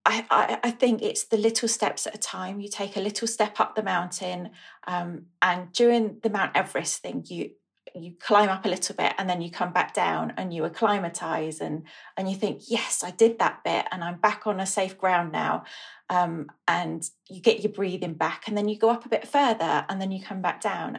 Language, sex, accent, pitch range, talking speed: English, female, British, 180-225 Hz, 225 wpm